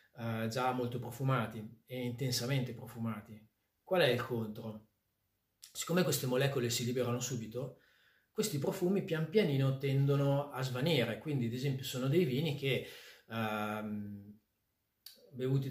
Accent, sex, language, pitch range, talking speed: native, male, Italian, 115-145 Hz, 120 wpm